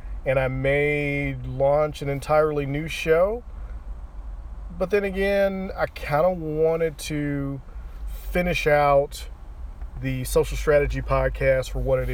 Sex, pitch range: male, 90-140 Hz